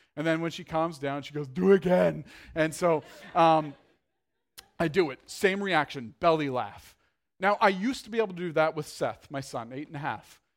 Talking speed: 215 wpm